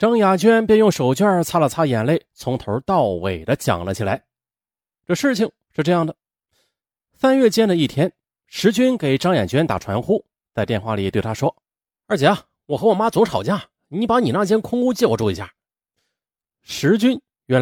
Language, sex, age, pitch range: Chinese, male, 30-49, 125-210 Hz